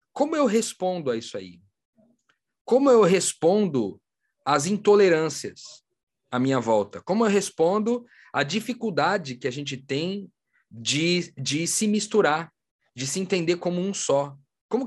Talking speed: 135 wpm